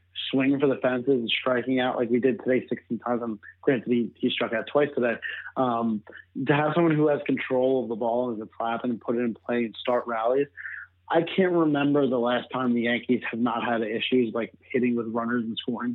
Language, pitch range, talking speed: English, 120-145 Hz, 230 wpm